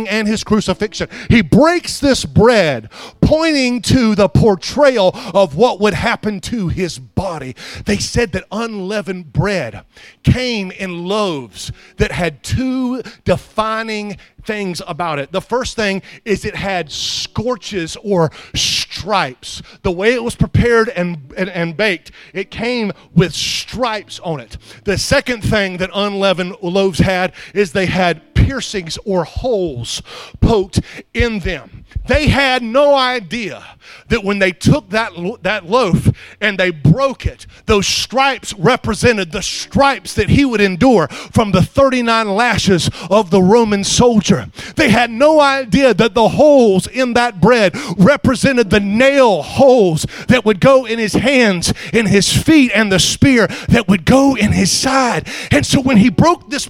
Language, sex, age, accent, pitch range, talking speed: English, male, 40-59, American, 185-240 Hz, 150 wpm